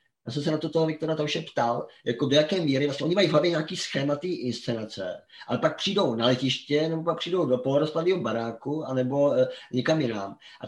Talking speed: 200 wpm